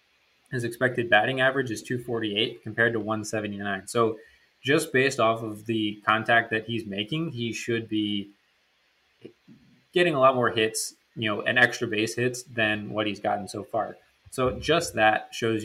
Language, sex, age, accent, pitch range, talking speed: English, male, 20-39, American, 105-120 Hz, 175 wpm